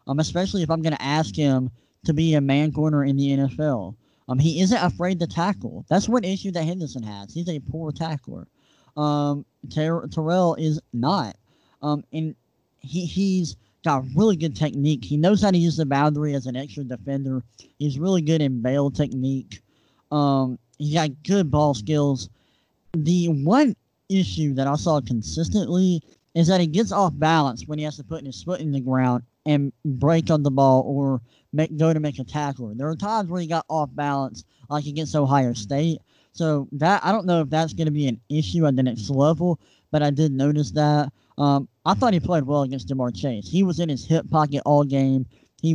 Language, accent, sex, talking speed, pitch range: English, American, male, 200 wpm, 135-165 Hz